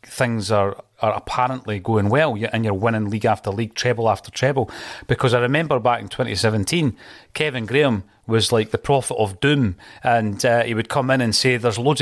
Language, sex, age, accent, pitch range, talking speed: English, male, 40-59, British, 105-125 Hz, 195 wpm